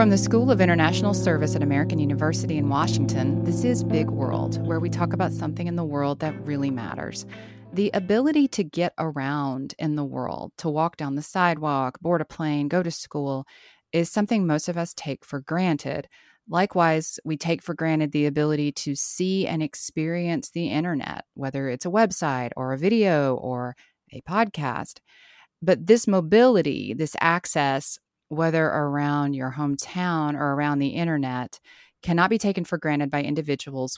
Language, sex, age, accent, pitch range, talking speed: English, female, 30-49, American, 140-175 Hz, 170 wpm